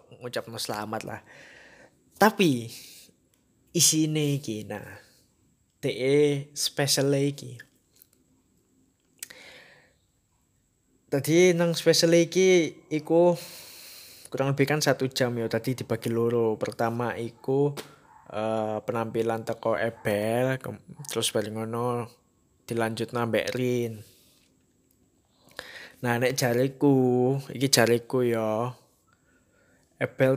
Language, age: Indonesian, 20-39